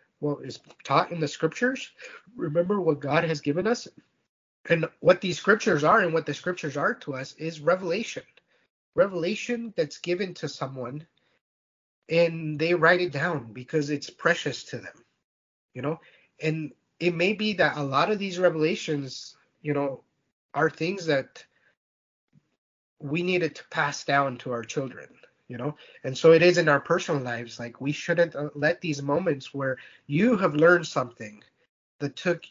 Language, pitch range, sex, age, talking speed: English, 140-170 Hz, male, 30-49, 165 wpm